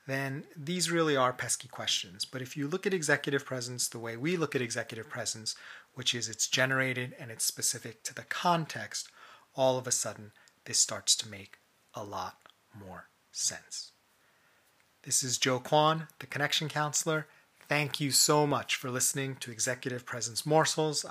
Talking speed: 170 wpm